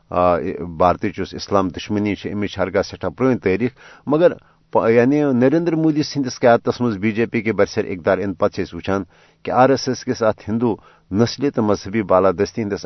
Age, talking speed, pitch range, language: 50-69, 155 wpm, 100-130 Hz, Urdu